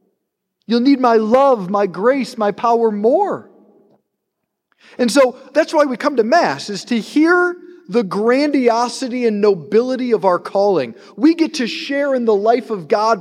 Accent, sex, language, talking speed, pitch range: American, male, English, 165 wpm, 190-250 Hz